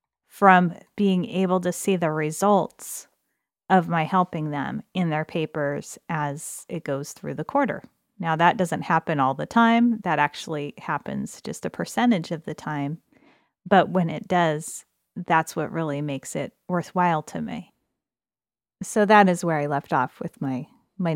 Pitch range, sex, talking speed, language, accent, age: 145-185 Hz, female, 165 wpm, English, American, 30-49